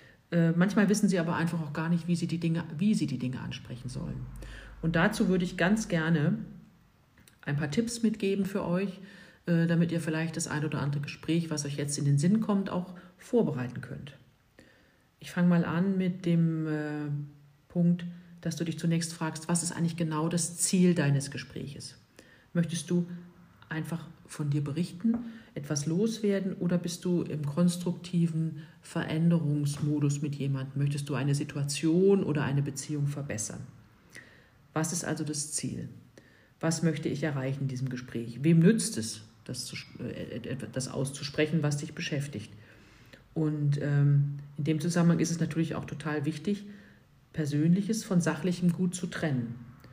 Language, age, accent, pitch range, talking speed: German, 40-59, German, 145-175 Hz, 155 wpm